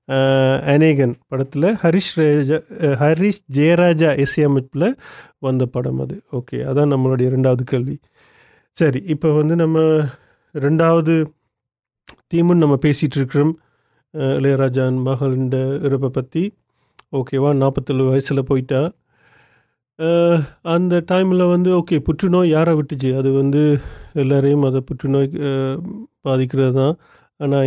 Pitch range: 135-165 Hz